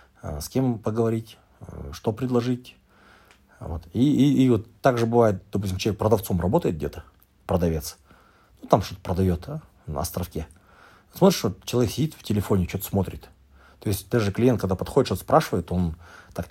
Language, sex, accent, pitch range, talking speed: Russian, male, native, 85-110 Hz, 155 wpm